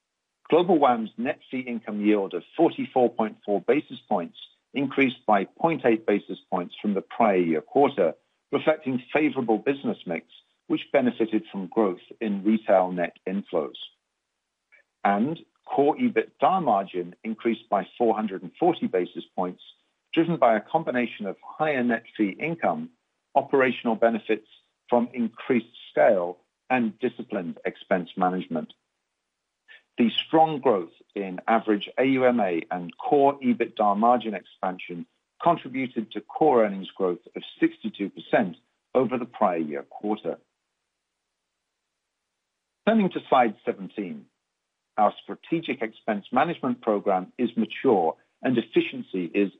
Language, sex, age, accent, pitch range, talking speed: English, male, 50-69, British, 105-140 Hz, 115 wpm